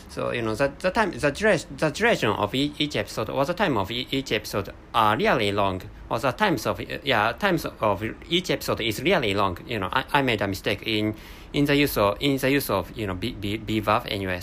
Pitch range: 100-145 Hz